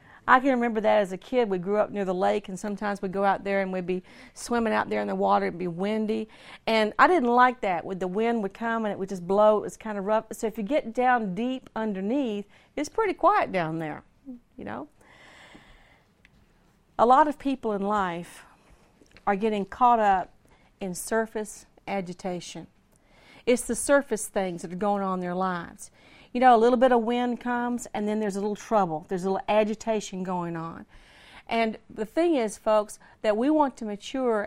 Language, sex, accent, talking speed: English, female, American, 205 wpm